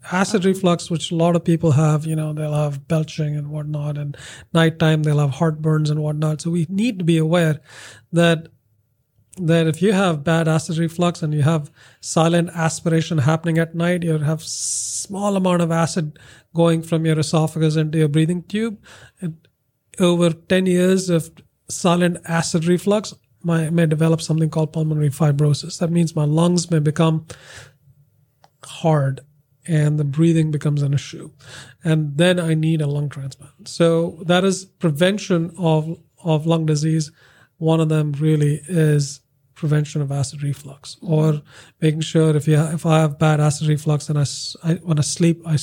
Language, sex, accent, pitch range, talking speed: English, male, Indian, 145-165 Hz, 170 wpm